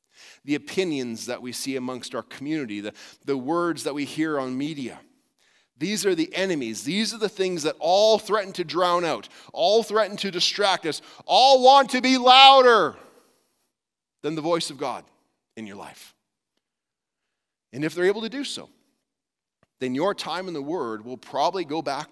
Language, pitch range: English, 140-210 Hz